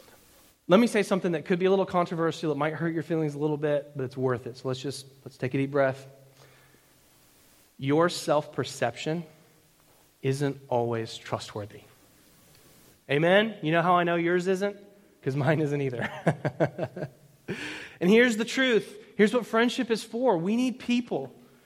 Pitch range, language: 135-195 Hz, English